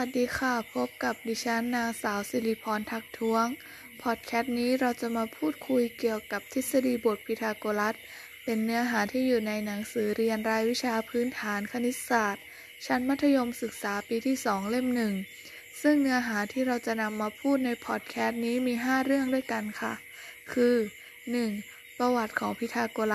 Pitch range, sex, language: 215-255 Hz, female, Thai